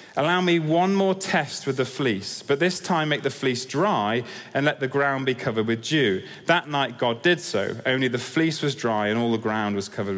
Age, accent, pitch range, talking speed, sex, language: 30-49, British, 130-175 Hz, 230 wpm, male, English